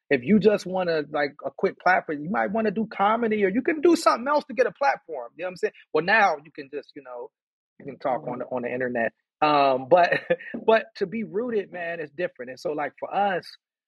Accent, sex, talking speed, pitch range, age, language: American, male, 255 wpm, 130-180 Hz, 30-49, English